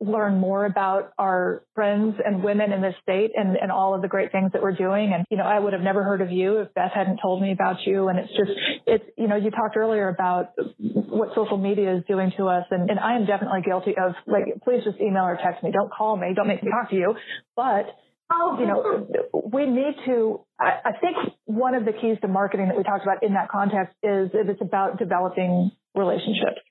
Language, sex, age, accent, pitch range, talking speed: English, female, 30-49, American, 190-215 Hz, 235 wpm